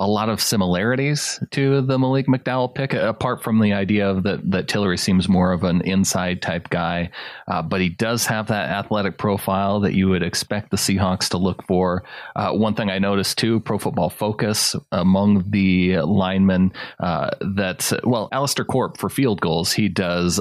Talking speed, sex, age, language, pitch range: 185 wpm, male, 30-49, English, 90-105 Hz